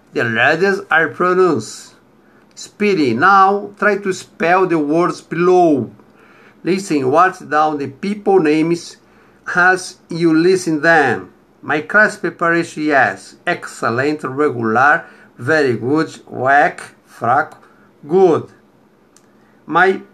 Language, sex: English, male